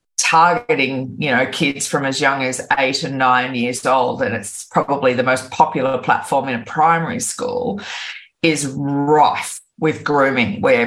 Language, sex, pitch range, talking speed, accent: English, female, 130-165 Hz, 160 wpm, Australian